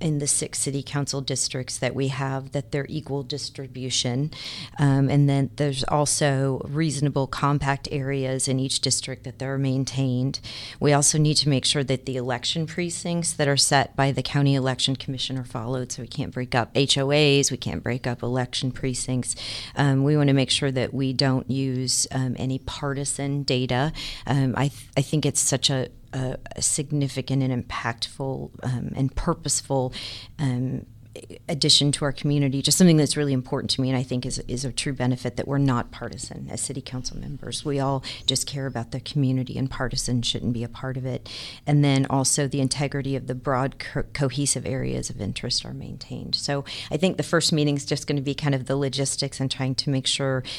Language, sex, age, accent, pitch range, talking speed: English, female, 40-59, American, 125-140 Hz, 195 wpm